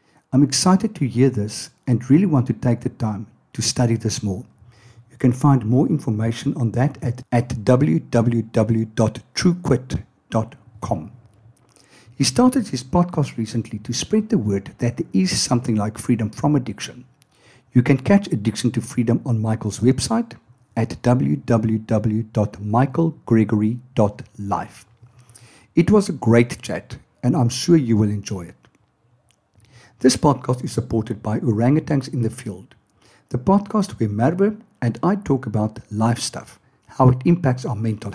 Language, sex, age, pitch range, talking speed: English, male, 60-79, 110-135 Hz, 140 wpm